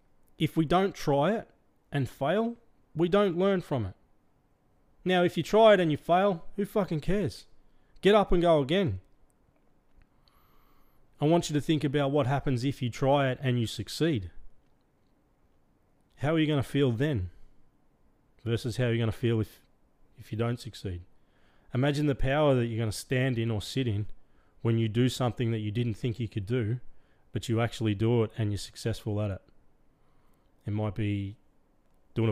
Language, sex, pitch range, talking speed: English, male, 110-135 Hz, 185 wpm